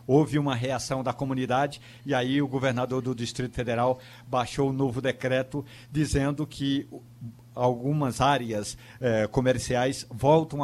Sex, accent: male, Brazilian